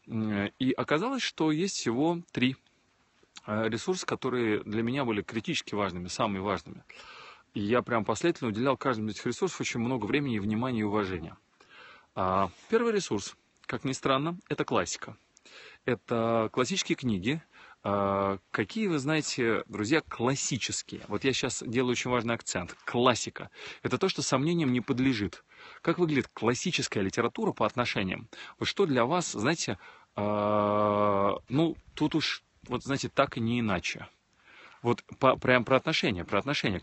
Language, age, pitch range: Russian, 30-49, 105-140 Hz